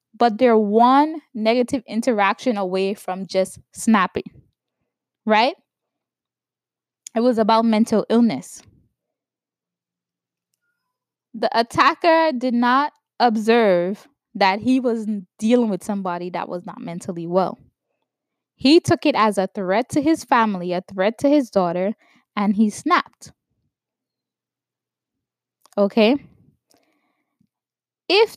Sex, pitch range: female, 190-250 Hz